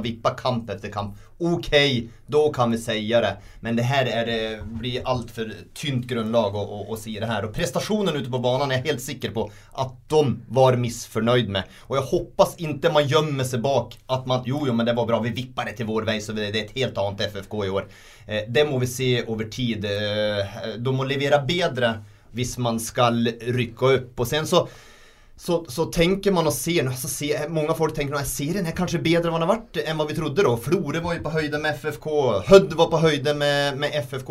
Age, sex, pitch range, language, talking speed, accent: 30-49, male, 115-150 Hz, English, 220 wpm, Swedish